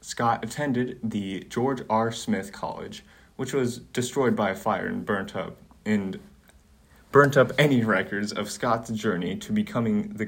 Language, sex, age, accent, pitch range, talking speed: English, male, 20-39, American, 95-120 Hz, 145 wpm